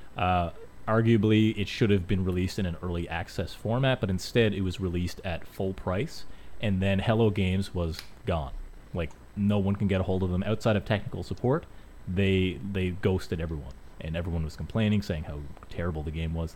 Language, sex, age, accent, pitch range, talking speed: English, male, 30-49, American, 85-100 Hz, 190 wpm